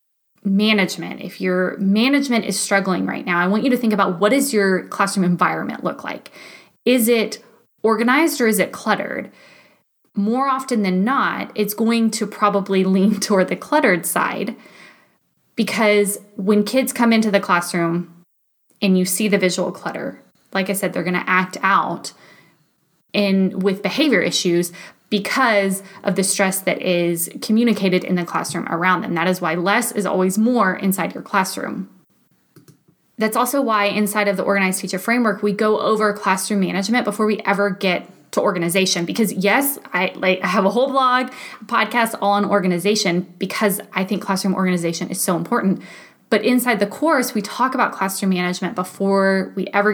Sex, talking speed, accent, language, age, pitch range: female, 170 wpm, American, English, 20-39, 185-220 Hz